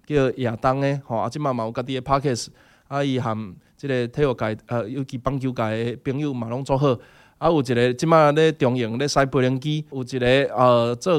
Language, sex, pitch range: Chinese, male, 125-180 Hz